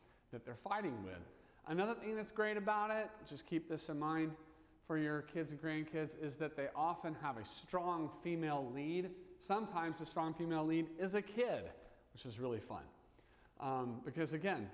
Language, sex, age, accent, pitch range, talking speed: English, male, 40-59, American, 125-180 Hz, 180 wpm